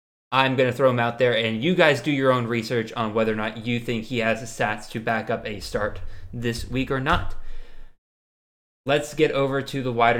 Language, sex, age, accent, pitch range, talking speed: English, male, 20-39, American, 120-145 Hz, 230 wpm